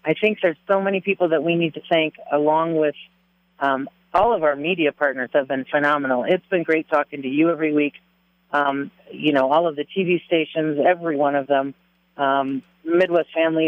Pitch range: 140-180 Hz